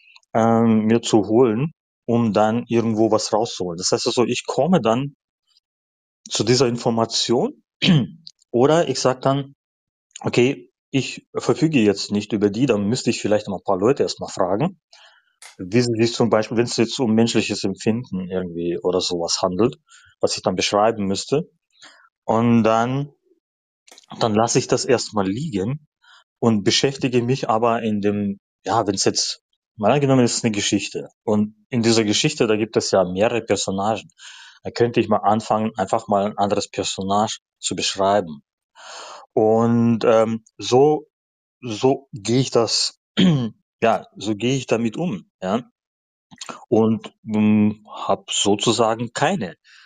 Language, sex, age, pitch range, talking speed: German, male, 30-49, 105-125 Hz, 145 wpm